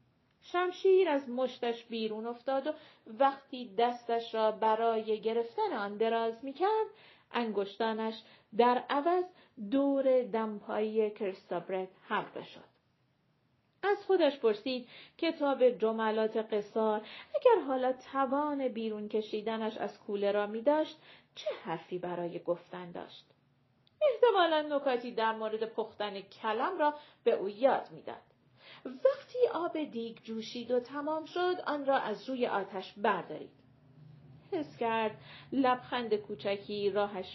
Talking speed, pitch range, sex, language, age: 115 wpm, 205-275 Hz, female, Persian, 40-59